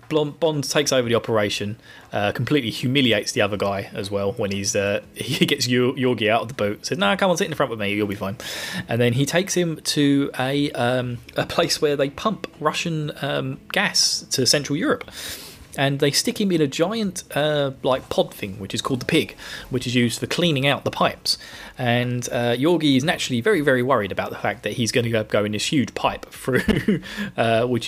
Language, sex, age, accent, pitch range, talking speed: English, male, 20-39, British, 115-150 Hz, 215 wpm